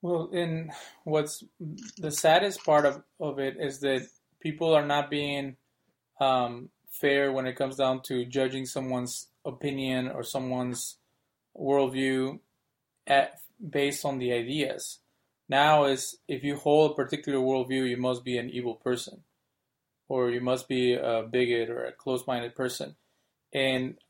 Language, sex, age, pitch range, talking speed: English, male, 20-39, 125-140 Hz, 145 wpm